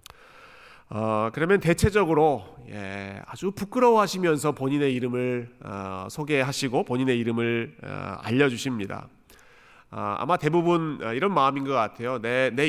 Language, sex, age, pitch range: Korean, male, 40-59, 115-155 Hz